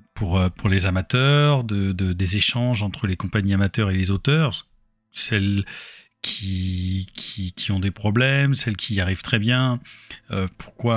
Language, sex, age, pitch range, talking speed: French, male, 40-59, 95-120 Hz, 160 wpm